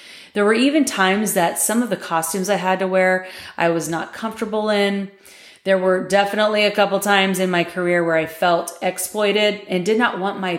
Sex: female